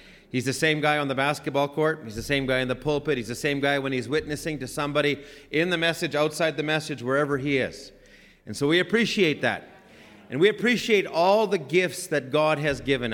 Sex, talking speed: male, 220 wpm